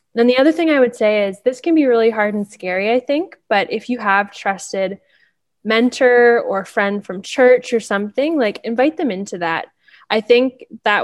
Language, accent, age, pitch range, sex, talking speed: English, American, 10-29, 195-230 Hz, female, 200 wpm